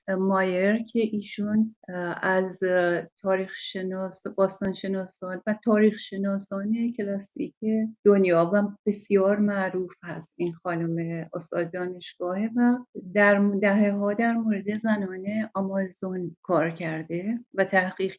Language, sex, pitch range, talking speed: Persian, female, 180-215 Hz, 100 wpm